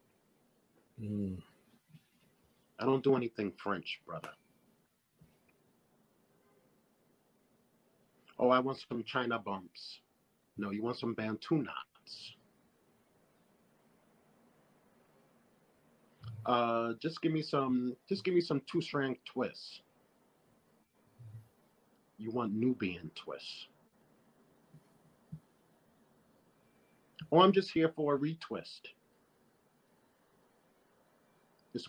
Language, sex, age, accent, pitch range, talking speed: English, male, 50-69, American, 110-135 Hz, 80 wpm